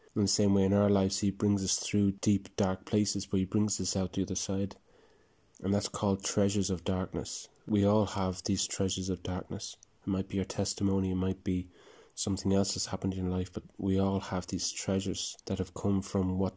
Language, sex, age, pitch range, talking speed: English, male, 20-39, 95-100 Hz, 220 wpm